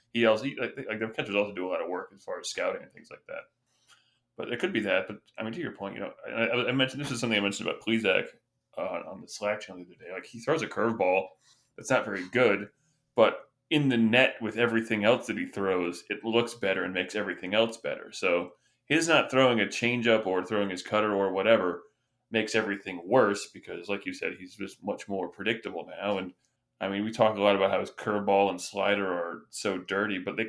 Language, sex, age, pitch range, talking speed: English, male, 20-39, 95-120 Hz, 240 wpm